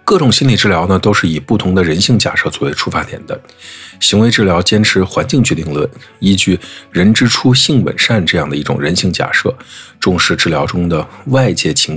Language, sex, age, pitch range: Chinese, male, 50-69, 90-125 Hz